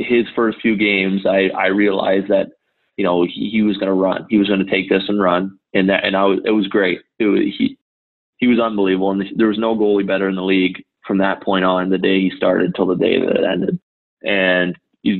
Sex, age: male, 20-39